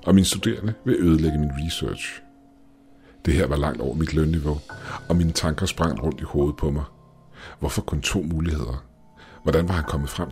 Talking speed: 185 wpm